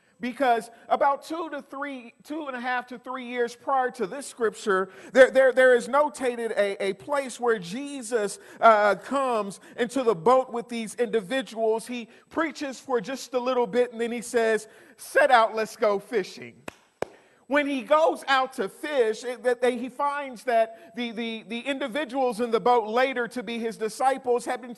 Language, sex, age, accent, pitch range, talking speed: English, male, 50-69, American, 225-265 Hz, 175 wpm